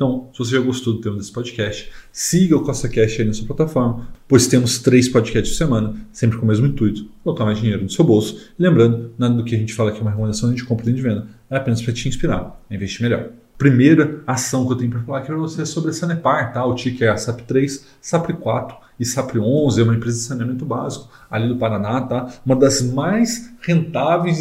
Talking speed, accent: 235 wpm, Brazilian